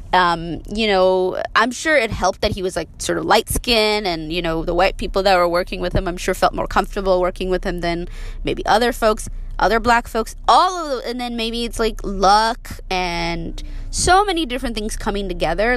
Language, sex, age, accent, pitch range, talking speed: English, female, 20-39, American, 165-210 Hz, 215 wpm